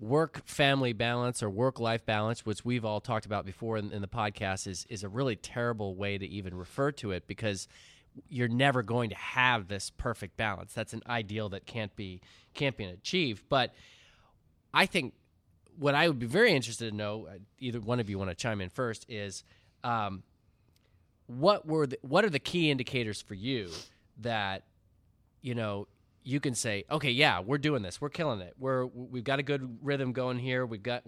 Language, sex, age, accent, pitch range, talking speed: English, male, 20-39, American, 100-130 Hz, 195 wpm